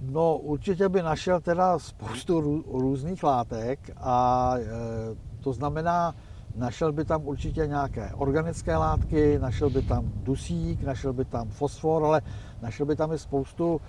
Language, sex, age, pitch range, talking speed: Czech, male, 60-79, 120-155 Hz, 145 wpm